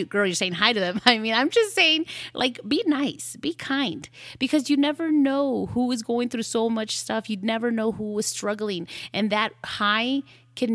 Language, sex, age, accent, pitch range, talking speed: English, female, 30-49, American, 185-250 Hz, 205 wpm